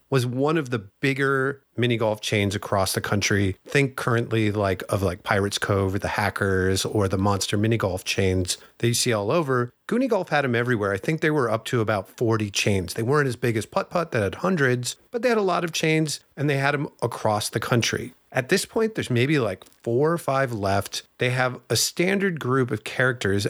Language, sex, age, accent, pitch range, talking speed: English, male, 40-59, American, 110-140 Hz, 220 wpm